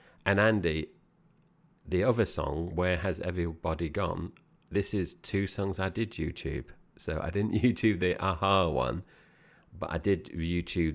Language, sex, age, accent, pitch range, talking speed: English, male, 40-59, British, 75-100 Hz, 150 wpm